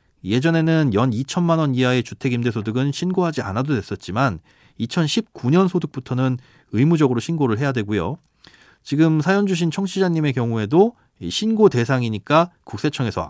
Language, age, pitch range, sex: Korean, 40-59, 105-150 Hz, male